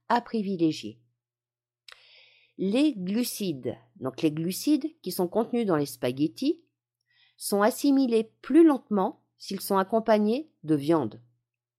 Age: 50-69